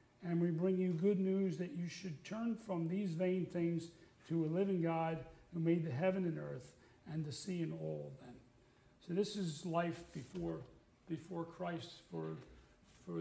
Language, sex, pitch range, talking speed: English, male, 165-190 Hz, 175 wpm